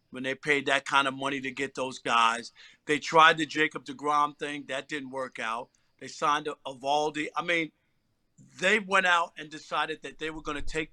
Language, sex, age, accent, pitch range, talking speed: English, male, 50-69, American, 145-175 Hz, 205 wpm